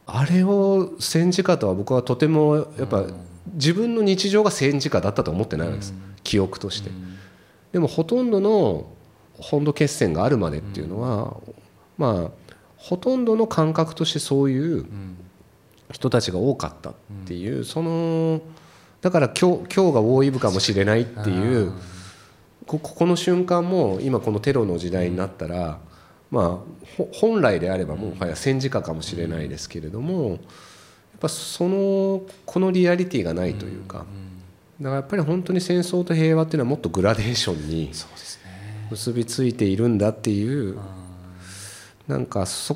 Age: 40-59